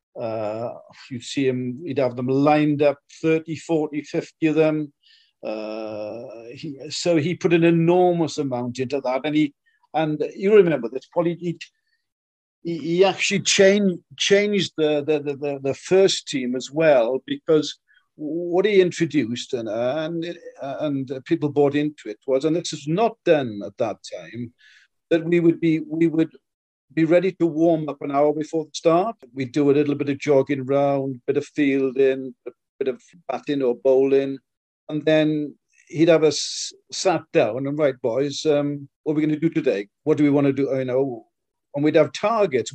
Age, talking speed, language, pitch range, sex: 50-69, 180 wpm, English, 140-175 Hz, male